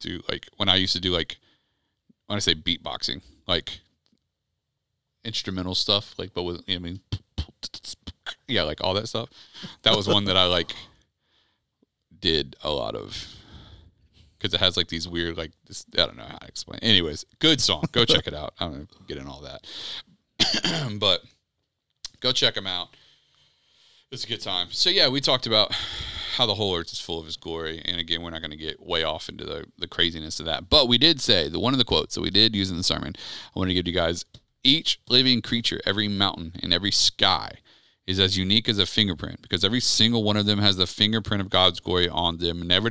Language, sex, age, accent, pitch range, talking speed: English, male, 30-49, American, 85-105 Hz, 215 wpm